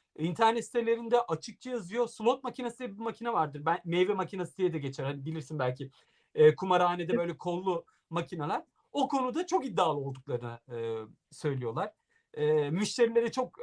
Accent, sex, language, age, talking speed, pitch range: native, male, Turkish, 50-69, 145 wpm, 155-250 Hz